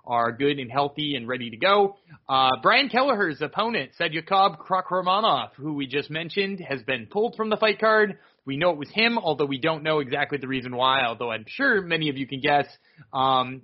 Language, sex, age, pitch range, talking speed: English, male, 30-49, 140-205 Hz, 205 wpm